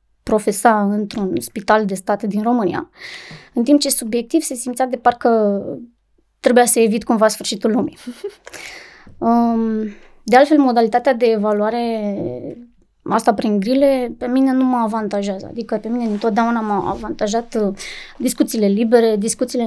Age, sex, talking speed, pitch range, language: 20-39, female, 130 wpm, 210-245 Hz, Romanian